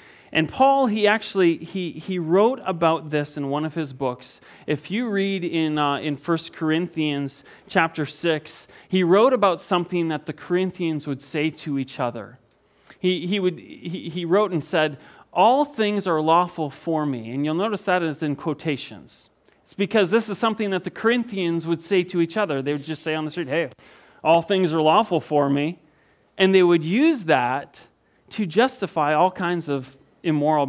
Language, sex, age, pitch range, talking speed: English, male, 30-49, 150-195 Hz, 185 wpm